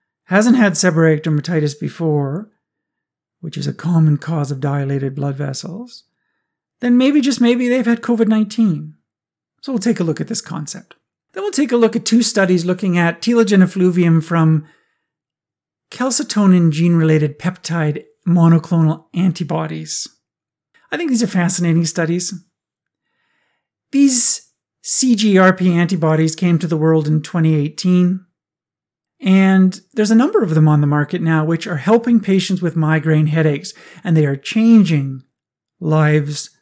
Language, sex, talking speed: English, male, 140 wpm